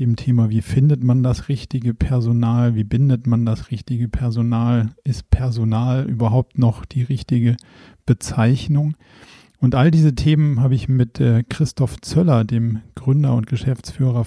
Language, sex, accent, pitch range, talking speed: German, male, German, 115-130 Hz, 145 wpm